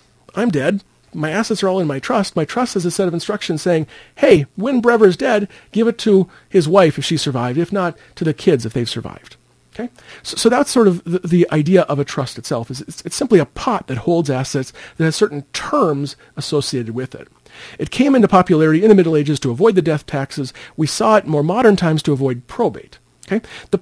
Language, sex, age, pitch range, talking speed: English, male, 40-59, 145-205 Hz, 230 wpm